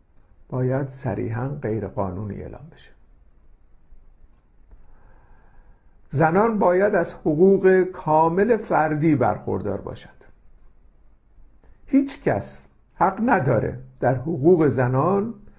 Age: 50-69